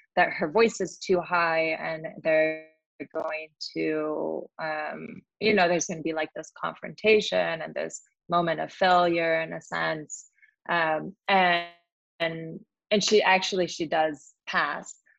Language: English